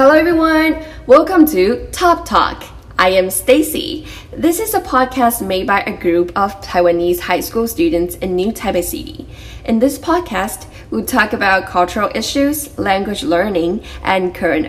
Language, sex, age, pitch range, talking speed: English, female, 10-29, 175-225 Hz, 155 wpm